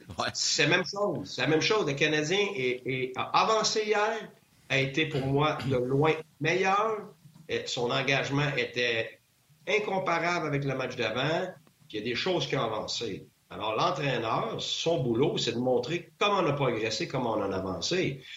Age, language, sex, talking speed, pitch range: 50-69, French, male, 175 wpm, 120-160 Hz